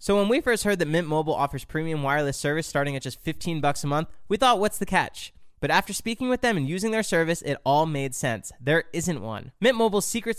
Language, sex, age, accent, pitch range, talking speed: English, male, 20-39, American, 135-190 Hz, 250 wpm